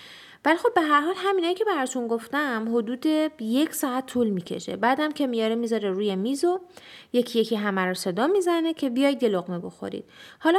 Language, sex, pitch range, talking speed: Persian, female, 195-290 Hz, 180 wpm